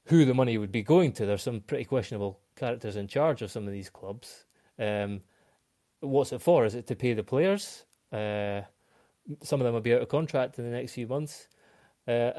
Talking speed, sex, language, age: 215 wpm, male, English, 20-39